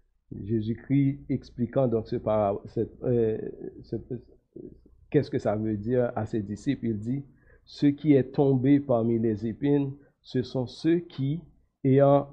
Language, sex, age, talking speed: French, male, 50-69, 140 wpm